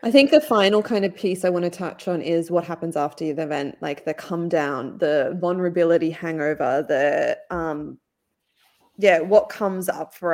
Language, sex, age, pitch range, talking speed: English, female, 20-39, 160-185 Hz, 185 wpm